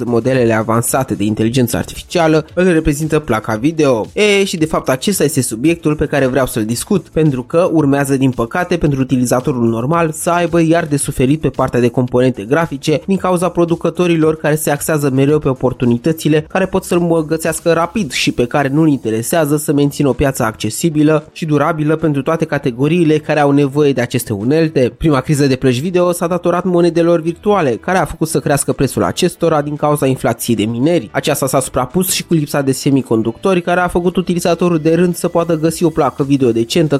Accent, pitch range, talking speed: native, 135-170 Hz, 190 wpm